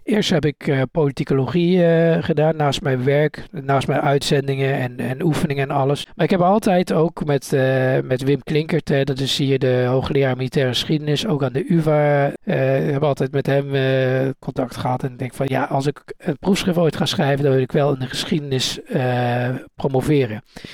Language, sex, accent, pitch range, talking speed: Dutch, male, Dutch, 135-165 Hz, 205 wpm